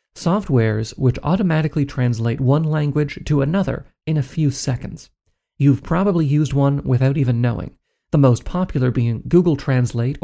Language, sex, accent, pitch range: English, male, American, 125-150 Hz